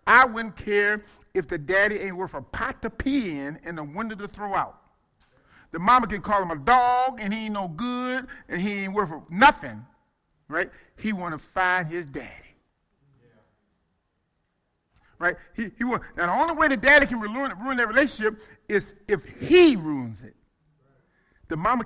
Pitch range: 165-245 Hz